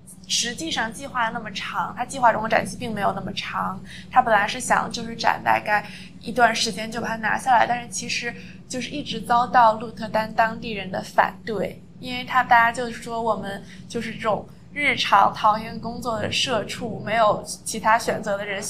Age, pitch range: 20-39, 205-240 Hz